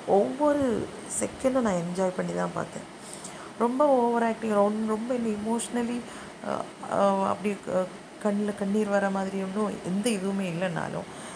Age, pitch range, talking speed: 20-39, 170-215 Hz, 120 wpm